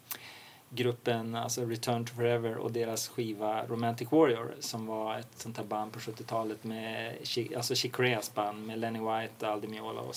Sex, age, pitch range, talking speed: male, 30-49, 115-130 Hz, 170 wpm